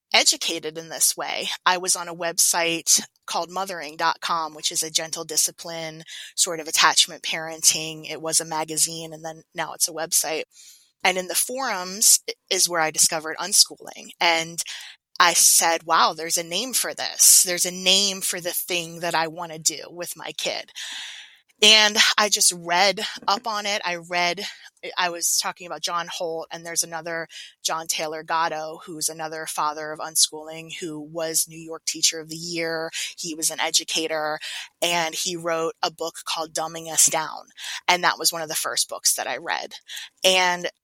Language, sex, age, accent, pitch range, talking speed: English, female, 20-39, American, 160-180 Hz, 180 wpm